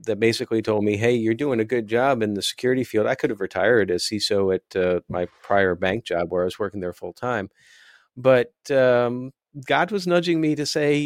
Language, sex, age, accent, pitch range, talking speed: English, male, 40-59, American, 105-130 Hz, 220 wpm